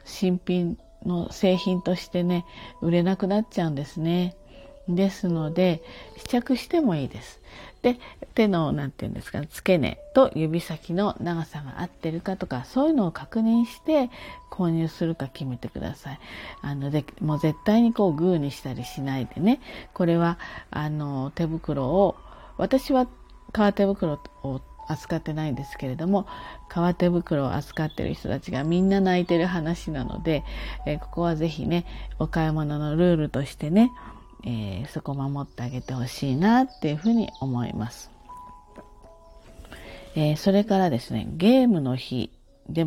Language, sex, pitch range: Japanese, female, 140-190 Hz